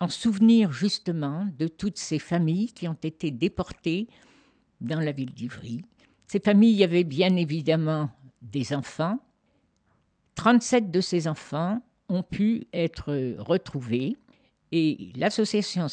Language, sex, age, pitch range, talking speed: French, female, 60-79, 145-210 Hz, 120 wpm